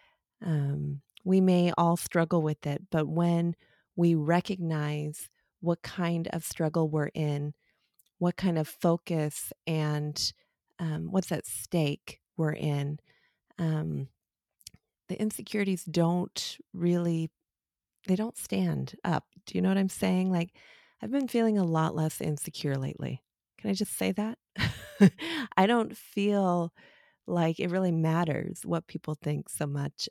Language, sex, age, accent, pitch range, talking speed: English, female, 30-49, American, 150-175 Hz, 140 wpm